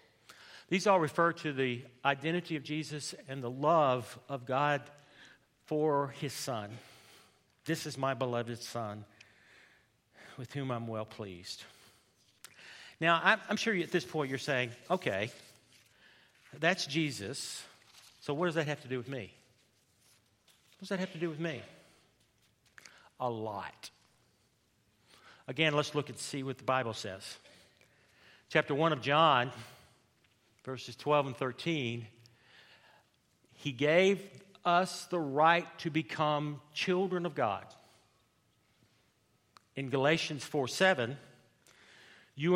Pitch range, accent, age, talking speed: 120-160 Hz, American, 50-69, 125 wpm